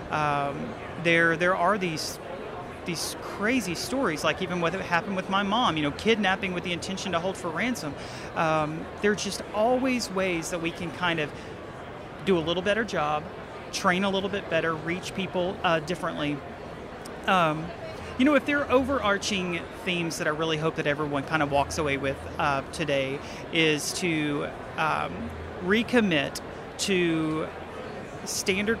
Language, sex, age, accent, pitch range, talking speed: English, male, 40-59, American, 150-185 Hz, 160 wpm